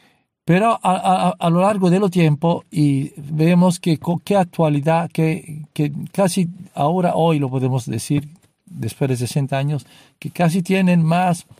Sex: male